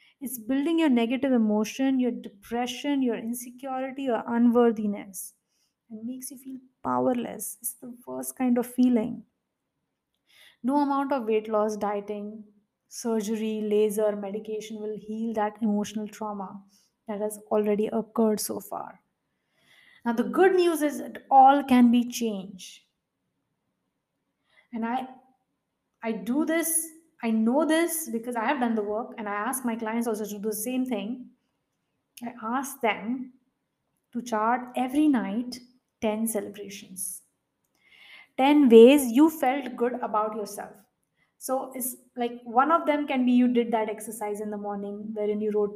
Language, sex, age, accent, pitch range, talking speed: English, female, 20-39, Indian, 215-255 Hz, 145 wpm